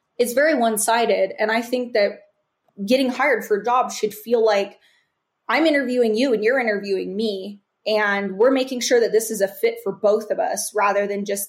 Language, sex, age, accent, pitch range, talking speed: English, female, 20-39, American, 205-250 Hz, 200 wpm